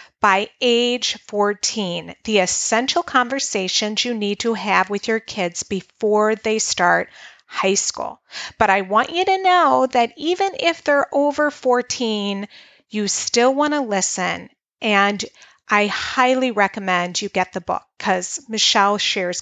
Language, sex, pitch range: English, female, 195-260 Hz